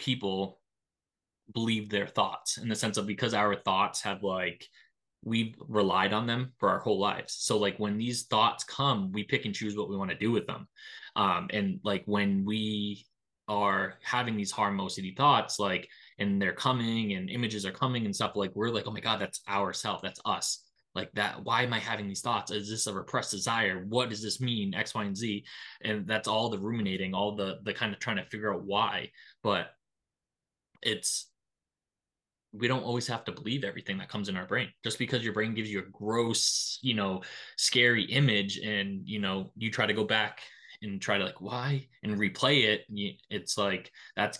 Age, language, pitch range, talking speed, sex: 20-39, English, 100-115 Hz, 205 wpm, male